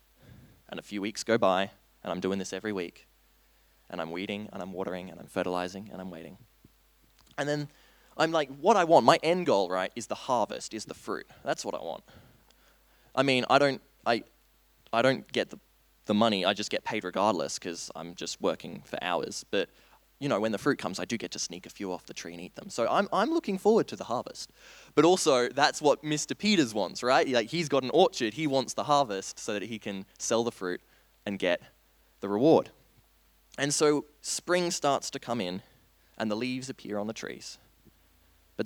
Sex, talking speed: male, 215 wpm